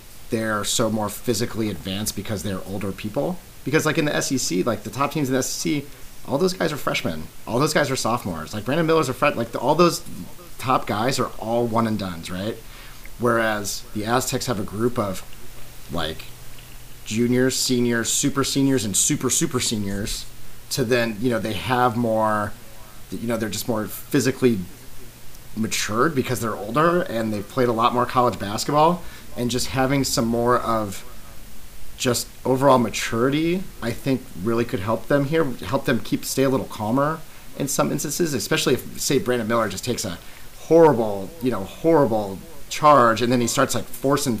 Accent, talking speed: American, 180 wpm